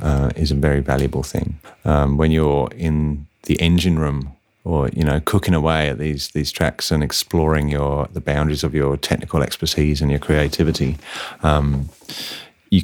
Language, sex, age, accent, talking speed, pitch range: English, male, 30-49, British, 170 wpm, 70-80 Hz